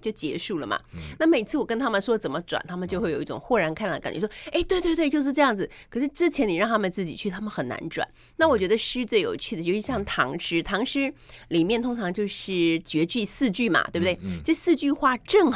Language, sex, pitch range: Chinese, female, 175-255 Hz